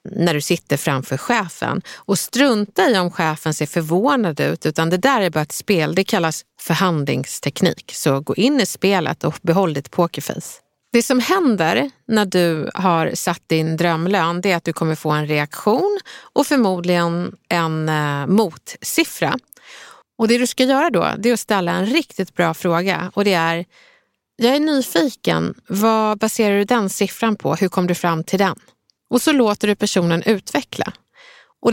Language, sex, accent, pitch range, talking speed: English, female, Swedish, 165-225 Hz, 175 wpm